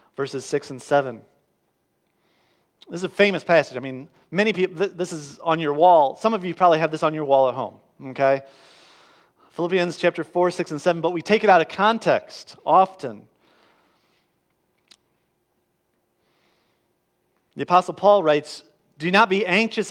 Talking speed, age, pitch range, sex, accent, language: 155 wpm, 40-59, 140-195 Hz, male, American, English